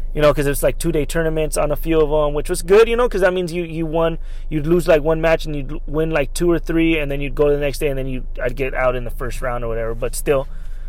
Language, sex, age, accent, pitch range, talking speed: English, male, 20-39, American, 125-165 Hz, 320 wpm